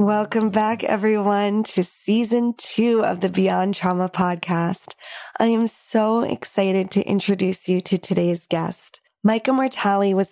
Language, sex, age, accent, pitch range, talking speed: English, female, 20-39, American, 180-210 Hz, 140 wpm